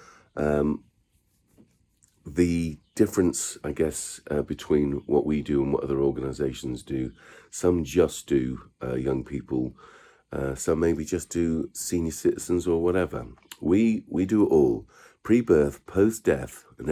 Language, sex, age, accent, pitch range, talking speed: English, male, 40-59, British, 70-90 Hz, 135 wpm